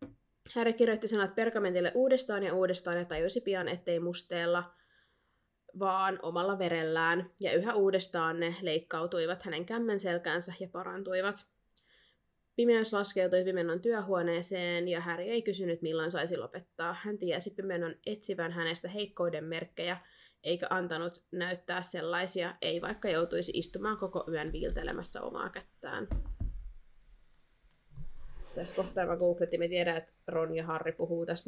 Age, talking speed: 20-39, 130 wpm